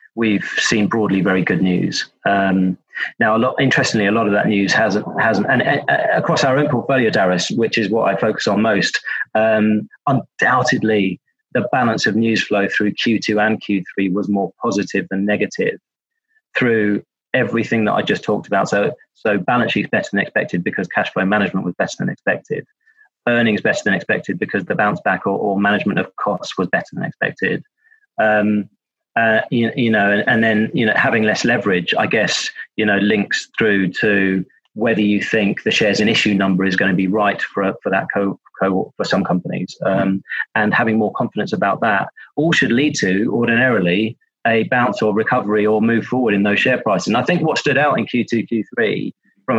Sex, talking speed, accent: male, 195 wpm, British